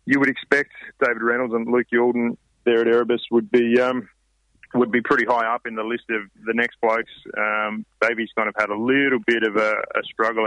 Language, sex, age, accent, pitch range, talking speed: English, male, 30-49, Australian, 105-120 Hz, 220 wpm